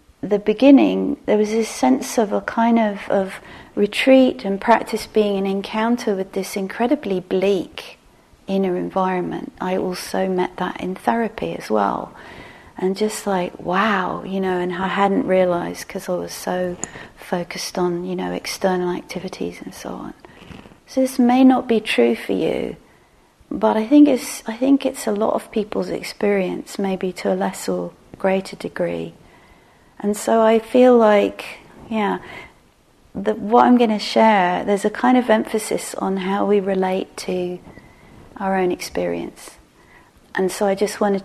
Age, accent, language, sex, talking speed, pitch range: 40-59, British, English, female, 160 wpm, 185-220 Hz